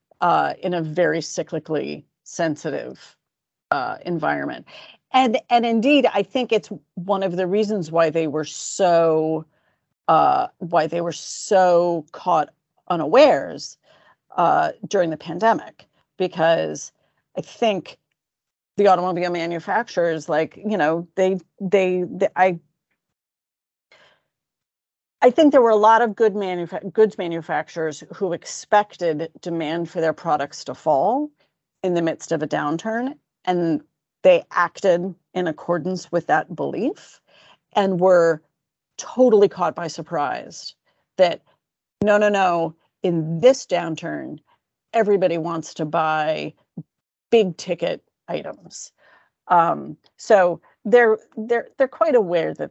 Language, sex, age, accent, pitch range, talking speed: English, female, 40-59, American, 160-205 Hz, 120 wpm